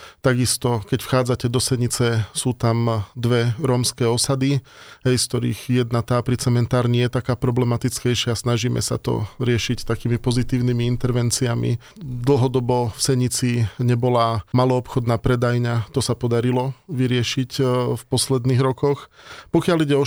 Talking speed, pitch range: 130 wpm, 120-130 Hz